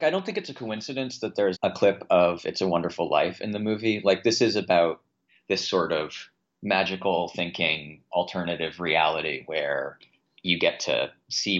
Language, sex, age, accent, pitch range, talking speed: English, male, 30-49, American, 90-125 Hz, 175 wpm